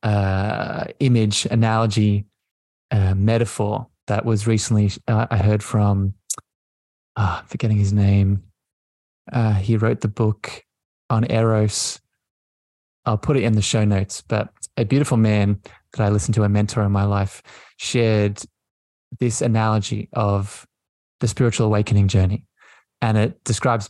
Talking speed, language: 135 wpm, English